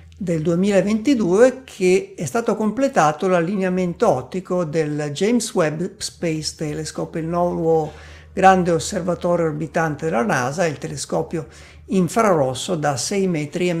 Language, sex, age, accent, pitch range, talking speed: Italian, male, 50-69, native, 155-195 Hz, 115 wpm